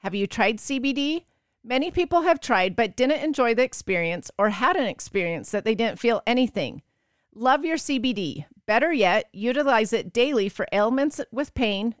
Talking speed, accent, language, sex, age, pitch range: 170 wpm, American, English, female, 40-59, 210-280 Hz